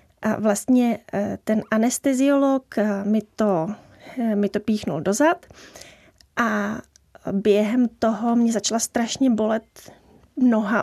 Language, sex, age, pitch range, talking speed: Czech, female, 30-49, 210-245 Hz, 100 wpm